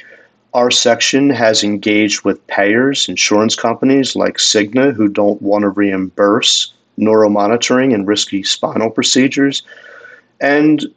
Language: English